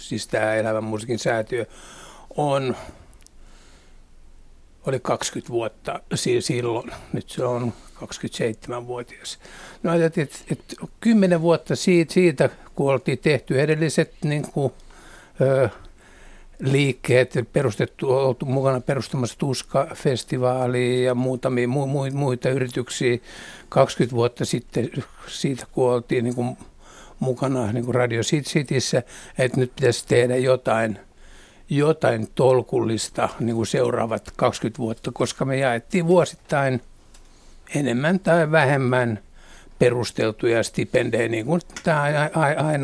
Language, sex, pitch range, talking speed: Finnish, male, 120-155 Hz, 100 wpm